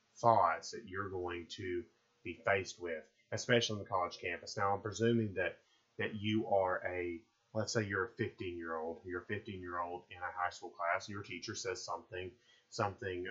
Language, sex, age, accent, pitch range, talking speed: English, male, 30-49, American, 100-115 Hz, 200 wpm